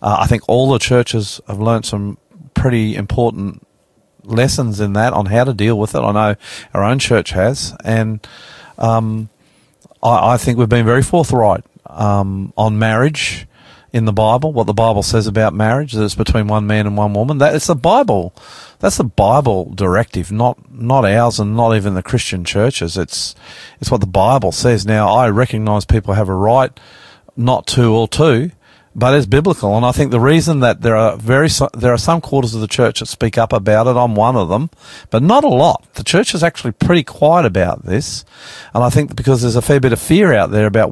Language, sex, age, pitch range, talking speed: English, male, 40-59, 110-130 Hz, 210 wpm